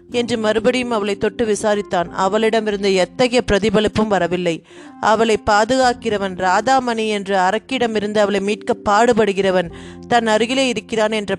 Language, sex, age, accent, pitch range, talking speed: Tamil, female, 30-49, native, 195-240 Hz, 110 wpm